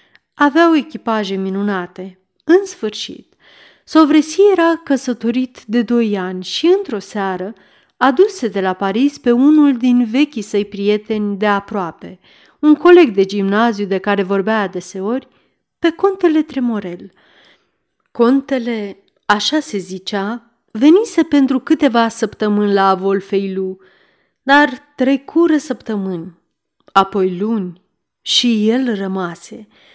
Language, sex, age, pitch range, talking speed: Romanian, female, 40-59, 195-265 Hz, 110 wpm